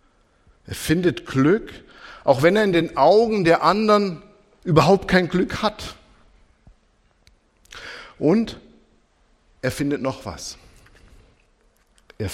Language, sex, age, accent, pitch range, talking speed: German, male, 50-69, German, 115-165 Hz, 100 wpm